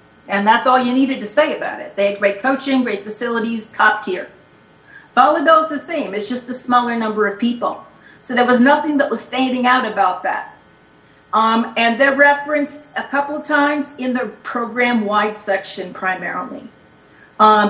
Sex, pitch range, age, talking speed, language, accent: female, 210-265 Hz, 40-59, 175 wpm, English, American